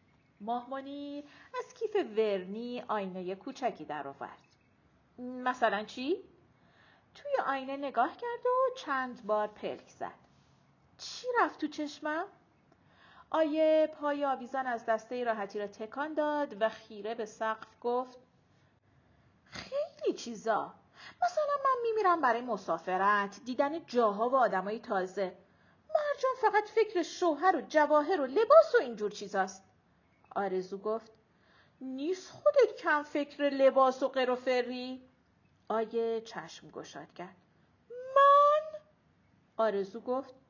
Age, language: 40-59, Persian